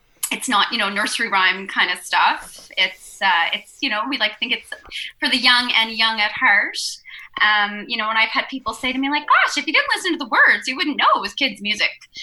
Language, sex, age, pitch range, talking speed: English, female, 20-39, 210-285 Hz, 250 wpm